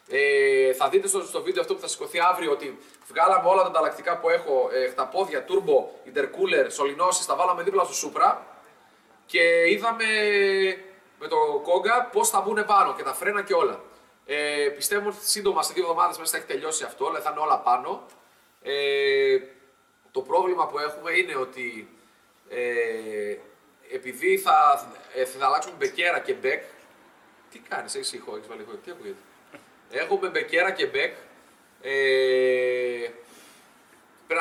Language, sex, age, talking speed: Greek, male, 30-49, 155 wpm